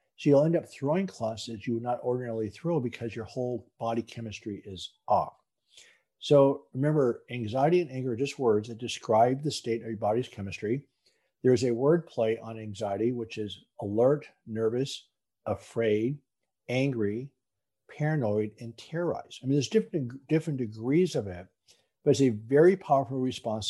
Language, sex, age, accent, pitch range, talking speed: English, male, 50-69, American, 110-145 Hz, 160 wpm